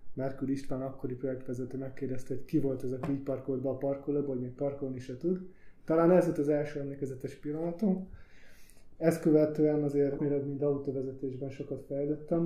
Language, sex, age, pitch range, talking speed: Hungarian, male, 20-39, 130-145 Hz, 165 wpm